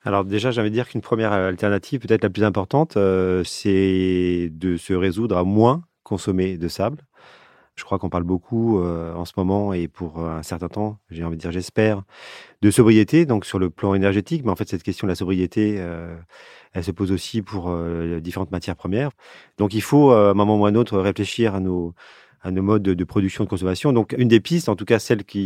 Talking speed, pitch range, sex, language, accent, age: 230 wpm, 95-115 Hz, male, French, French, 30-49